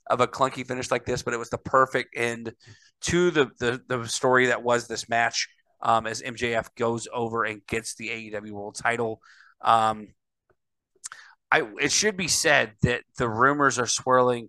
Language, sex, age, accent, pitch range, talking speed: English, male, 30-49, American, 115-135 Hz, 180 wpm